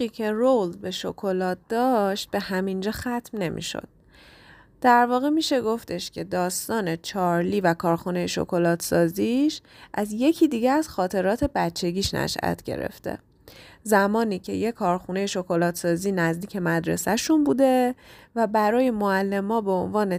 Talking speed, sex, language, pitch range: 130 wpm, female, Persian, 180-250 Hz